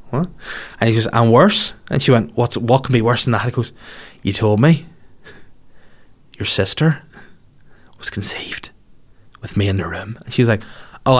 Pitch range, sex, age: 110-135 Hz, male, 20-39